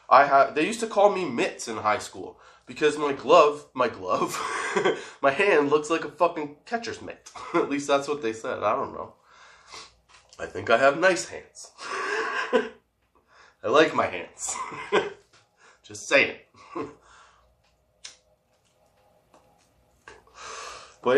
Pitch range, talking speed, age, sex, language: 105-150 Hz, 125 wpm, 20-39, male, English